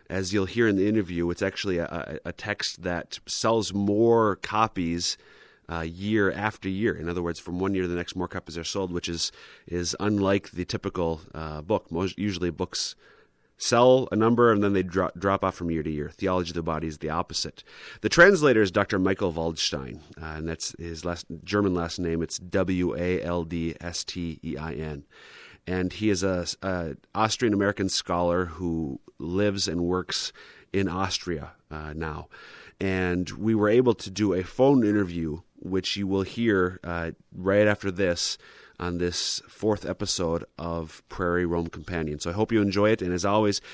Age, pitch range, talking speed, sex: 30-49, 85-100 Hz, 175 wpm, male